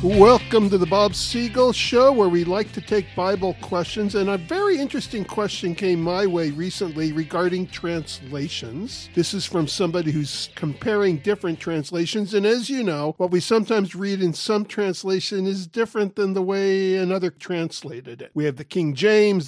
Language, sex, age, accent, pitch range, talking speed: English, male, 50-69, American, 165-205 Hz, 175 wpm